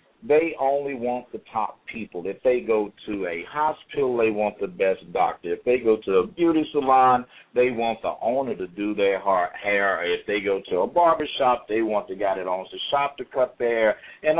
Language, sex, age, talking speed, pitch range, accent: English, male, 50-69, 215 wpm, 105-160 Hz, American